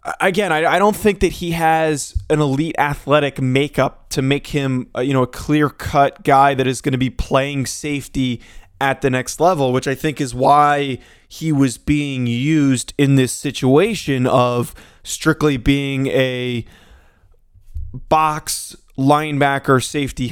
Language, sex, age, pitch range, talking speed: English, male, 20-39, 130-155 Hz, 140 wpm